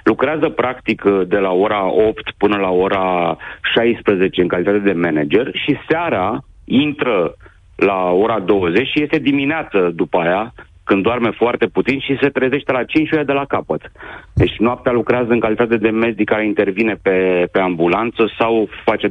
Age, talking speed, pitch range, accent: 40-59, 165 wpm, 90-120 Hz, native